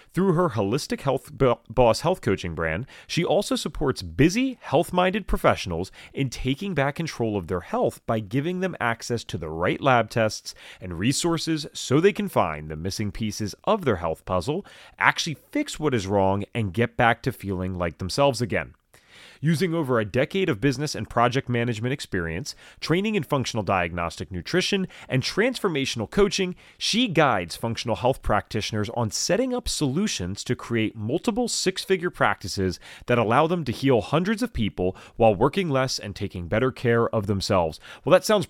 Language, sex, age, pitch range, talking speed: English, male, 30-49, 105-155 Hz, 170 wpm